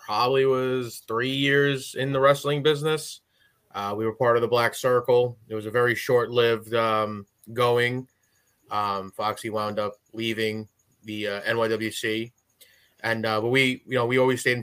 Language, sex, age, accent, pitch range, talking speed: English, male, 20-39, American, 115-130 Hz, 170 wpm